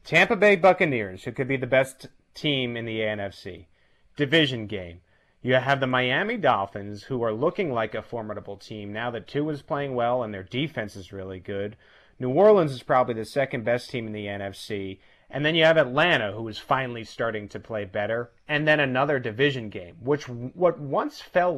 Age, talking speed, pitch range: 30-49, 195 wpm, 115-155 Hz